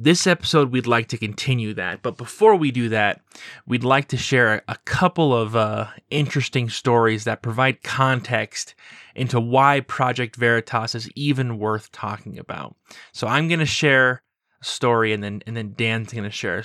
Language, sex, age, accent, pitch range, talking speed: English, male, 20-39, American, 110-130 Hz, 175 wpm